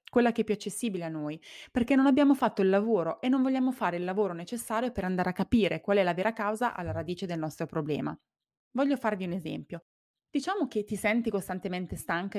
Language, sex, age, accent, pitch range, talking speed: Italian, female, 20-39, native, 170-230 Hz, 215 wpm